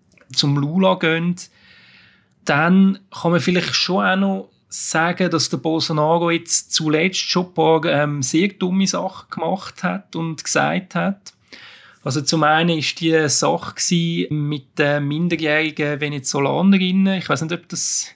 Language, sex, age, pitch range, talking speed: German, male, 30-49, 155-185 Hz, 140 wpm